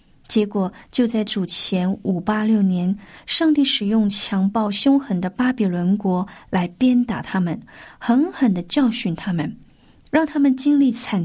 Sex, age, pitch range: female, 20-39, 195-245 Hz